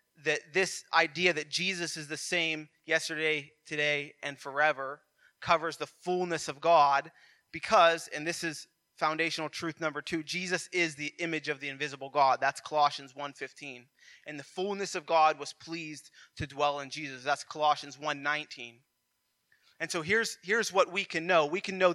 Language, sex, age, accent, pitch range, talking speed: English, male, 20-39, American, 140-165 Hz, 165 wpm